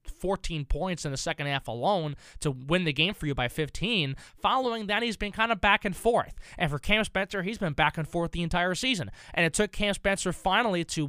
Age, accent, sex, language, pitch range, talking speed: 20-39, American, male, English, 150-195 Hz, 235 wpm